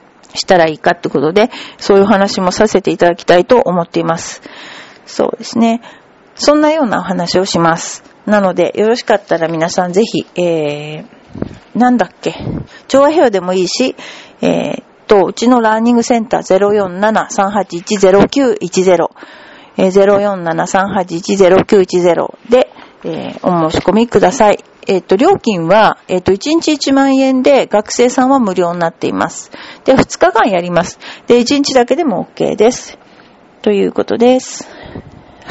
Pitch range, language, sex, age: 180-245 Hz, Japanese, female, 40-59